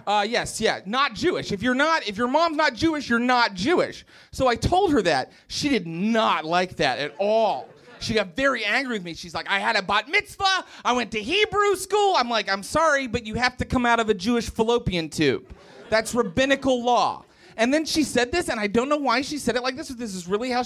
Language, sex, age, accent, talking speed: English, male, 30-49, American, 245 wpm